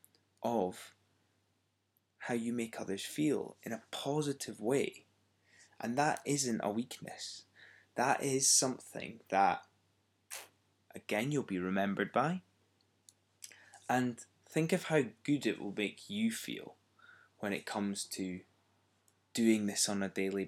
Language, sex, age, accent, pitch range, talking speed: English, male, 20-39, British, 95-115 Hz, 125 wpm